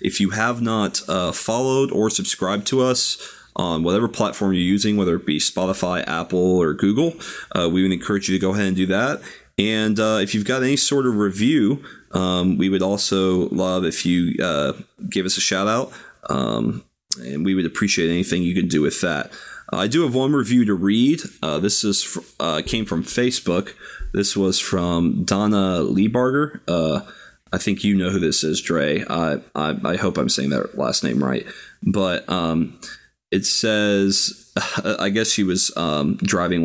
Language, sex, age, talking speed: English, male, 30-49, 190 wpm